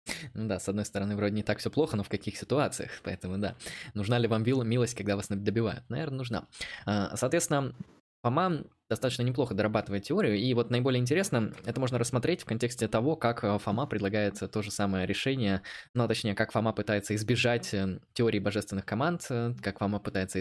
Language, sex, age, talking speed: Russian, male, 20-39, 180 wpm